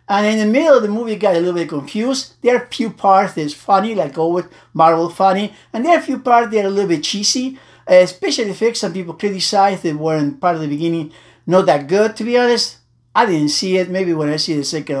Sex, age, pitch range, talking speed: male, 60-79, 145-190 Hz, 260 wpm